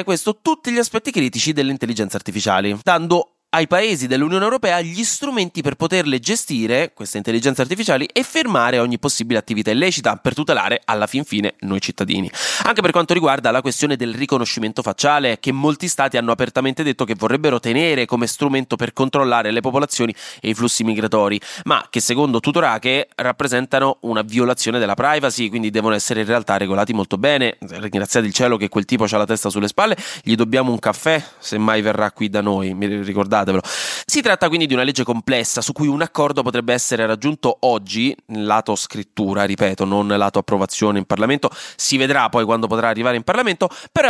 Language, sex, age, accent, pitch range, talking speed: Italian, male, 20-39, native, 110-165 Hz, 180 wpm